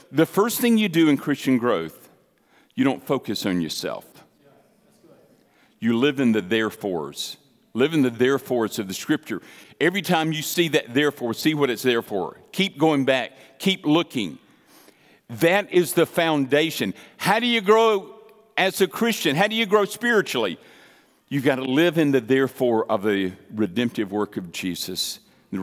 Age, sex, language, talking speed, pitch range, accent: 50-69, male, English, 165 wpm, 115-160 Hz, American